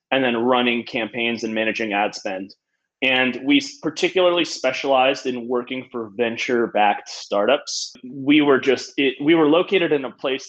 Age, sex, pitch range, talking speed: 20-39, male, 115-145 Hz, 155 wpm